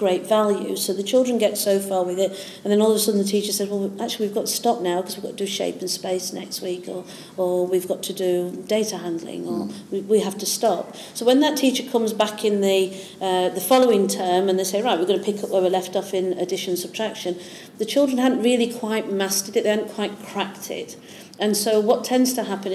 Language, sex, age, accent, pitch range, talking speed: English, female, 40-59, British, 185-215 Hz, 255 wpm